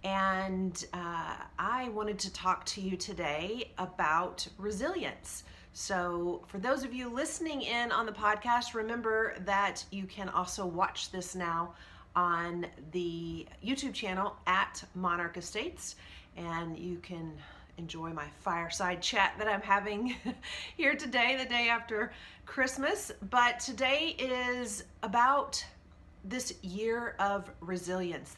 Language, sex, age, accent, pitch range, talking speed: English, female, 40-59, American, 175-225 Hz, 125 wpm